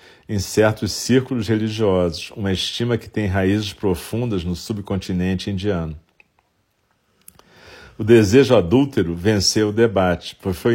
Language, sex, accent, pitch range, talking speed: Portuguese, male, Brazilian, 90-110 Hz, 115 wpm